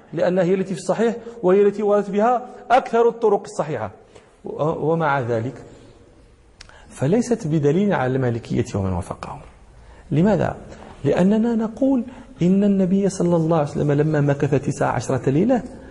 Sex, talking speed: male, 130 wpm